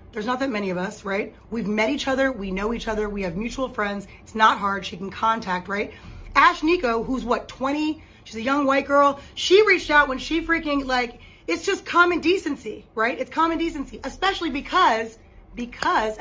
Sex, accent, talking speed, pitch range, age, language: female, American, 200 wpm, 215-285 Hz, 30-49, English